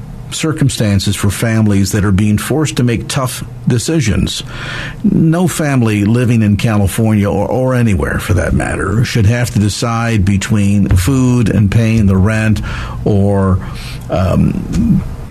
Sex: male